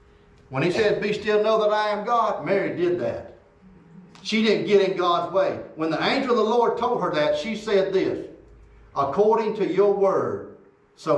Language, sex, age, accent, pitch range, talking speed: English, male, 50-69, American, 175-280 Hz, 195 wpm